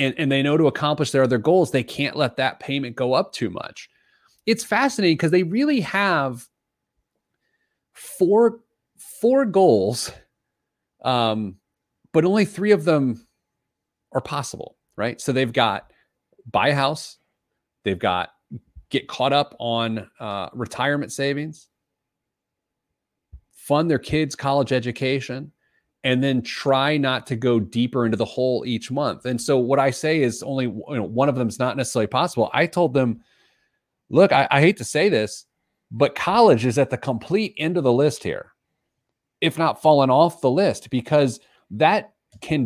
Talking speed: 160 wpm